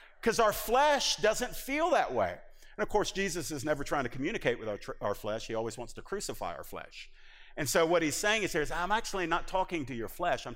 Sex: male